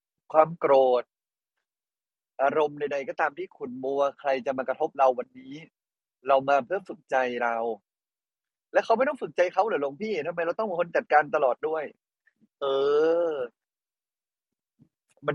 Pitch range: 130-180 Hz